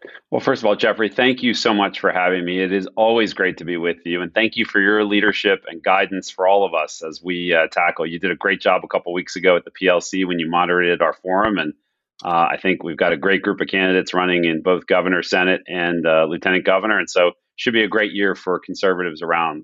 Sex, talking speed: male, 255 wpm